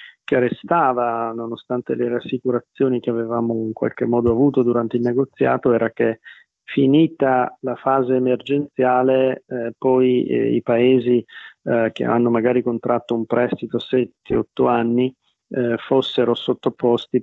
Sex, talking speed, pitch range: male, 125 wpm, 115-125 Hz